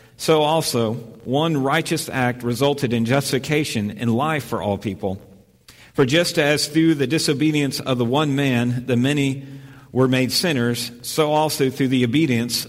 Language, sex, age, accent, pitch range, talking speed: English, male, 50-69, American, 115-140 Hz, 155 wpm